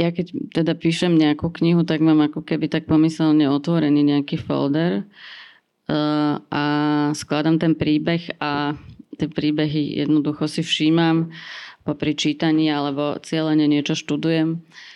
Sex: female